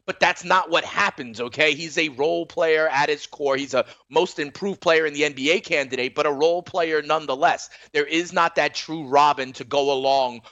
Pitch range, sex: 155-215 Hz, male